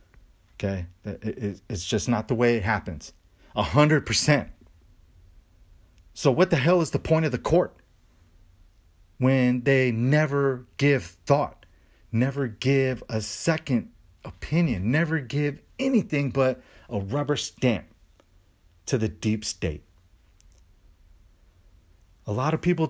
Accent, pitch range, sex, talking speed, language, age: American, 90-140 Hz, male, 120 wpm, English, 30-49